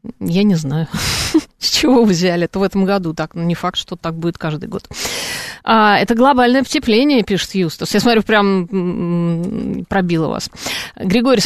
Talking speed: 180 wpm